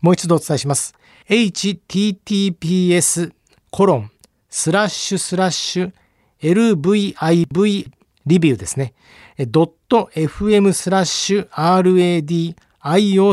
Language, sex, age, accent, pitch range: Japanese, male, 40-59, native, 150-200 Hz